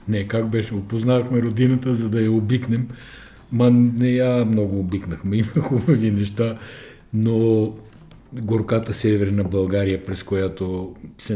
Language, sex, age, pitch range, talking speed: Bulgarian, male, 50-69, 100-120 Hz, 125 wpm